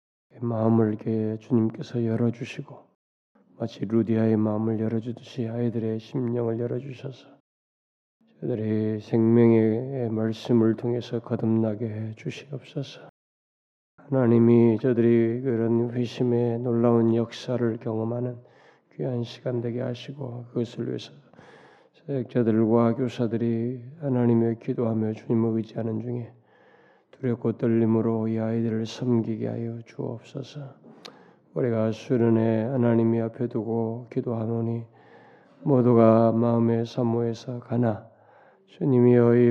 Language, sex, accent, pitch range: Korean, male, native, 115-125 Hz